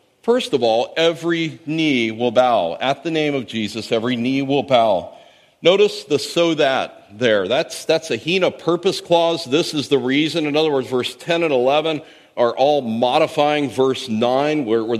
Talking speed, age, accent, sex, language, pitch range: 180 wpm, 50-69, American, male, English, 130-165 Hz